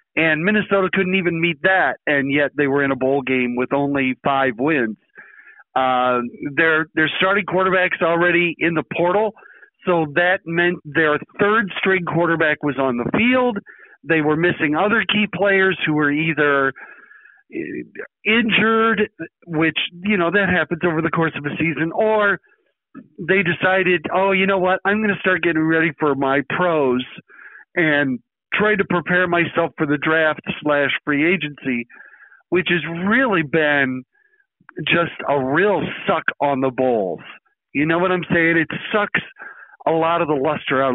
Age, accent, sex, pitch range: 50-69, American, male, 150-190 Hz